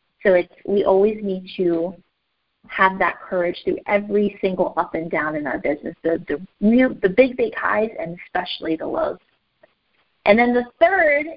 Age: 30-49